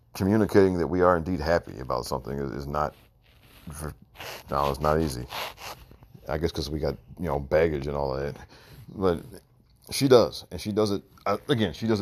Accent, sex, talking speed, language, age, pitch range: American, male, 175 wpm, English, 40-59, 80-110 Hz